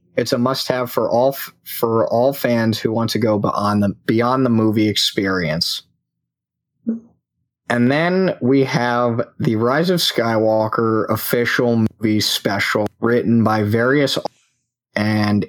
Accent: American